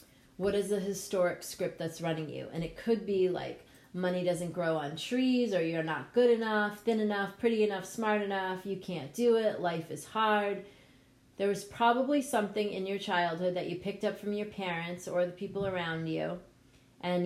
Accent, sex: American, female